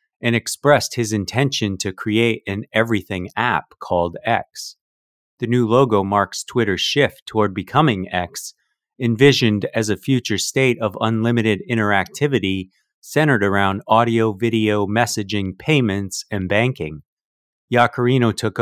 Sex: male